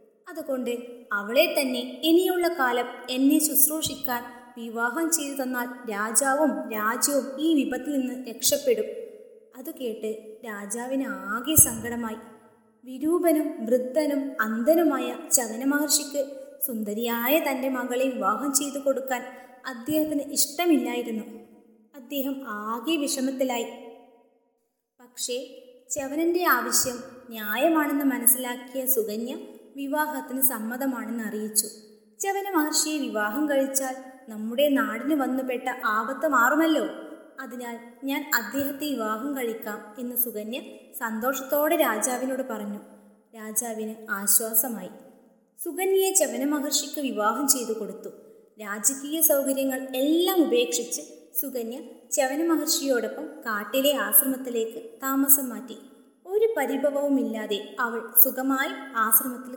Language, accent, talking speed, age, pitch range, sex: Malayalam, native, 85 wpm, 20-39, 235-290 Hz, female